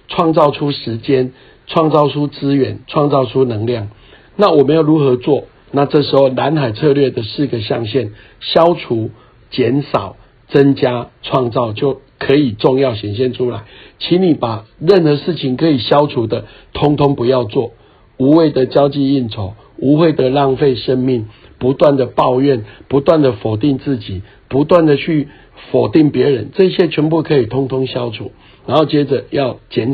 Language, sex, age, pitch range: Chinese, male, 60-79, 120-145 Hz